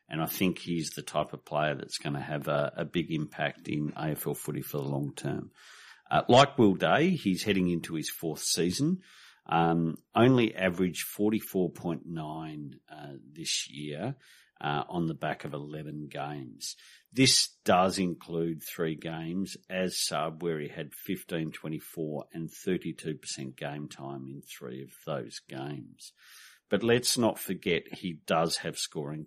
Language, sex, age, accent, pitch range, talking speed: English, male, 50-69, Australian, 75-95 Hz, 155 wpm